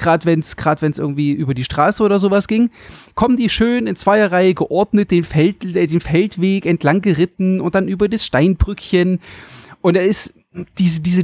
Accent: German